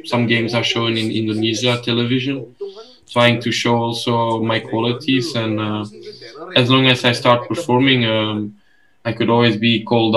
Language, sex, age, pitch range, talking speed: Indonesian, male, 10-29, 110-120 Hz, 160 wpm